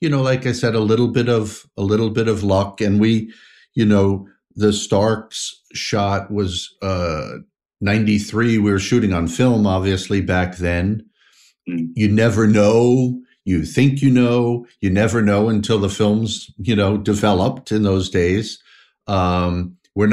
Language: English